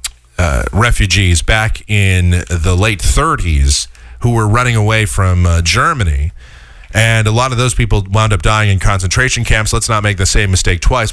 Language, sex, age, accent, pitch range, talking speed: English, male, 40-59, American, 90-125 Hz, 180 wpm